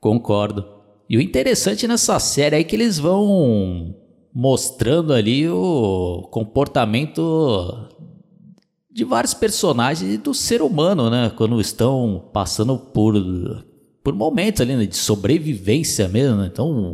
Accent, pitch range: Brazilian, 105-140 Hz